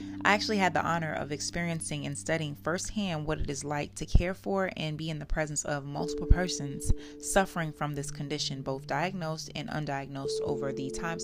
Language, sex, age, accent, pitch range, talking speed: English, female, 30-49, American, 130-165 Hz, 190 wpm